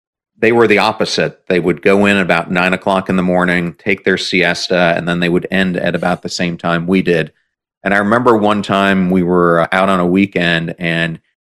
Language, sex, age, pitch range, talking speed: English, male, 40-59, 90-105 Hz, 215 wpm